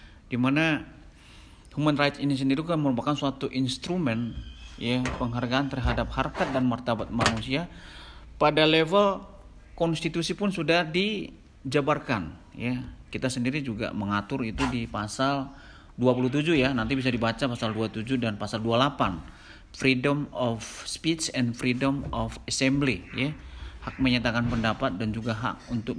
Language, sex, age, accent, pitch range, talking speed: Indonesian, male, 50-69, native, 115-140 Hz, 130 wpm